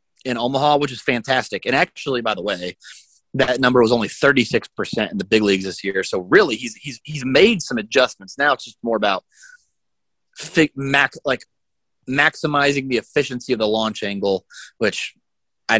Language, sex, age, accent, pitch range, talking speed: English, male, 30-49, American, 105-135 Hz, 165 wpm